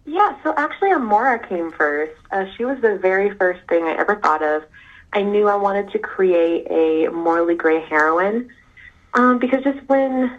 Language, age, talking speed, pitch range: English, 30-49, 180 wpm, 160-210 Hz